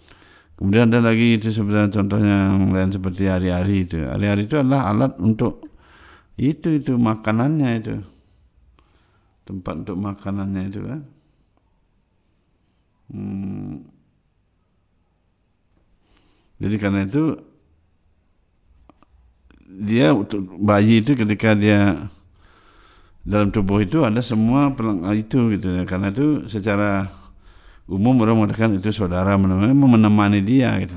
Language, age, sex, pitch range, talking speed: Indonesian, 60-79, male, 90-105 Hz, 105 wpm